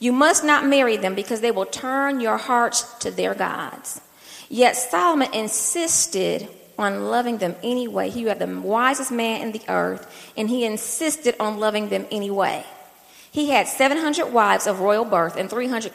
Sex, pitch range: female, 215-265 Hz